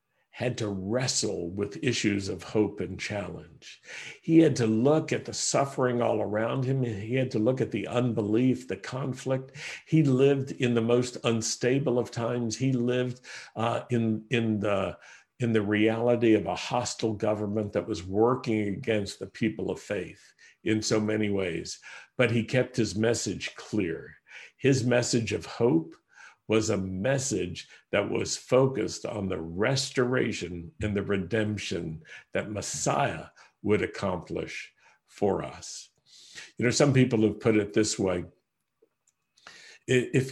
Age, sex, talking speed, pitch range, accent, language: 50-69, male, 145 wpm, 100-125 Hz, American, English